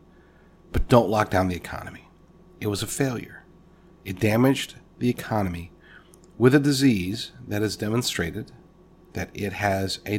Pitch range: 110-145 Hz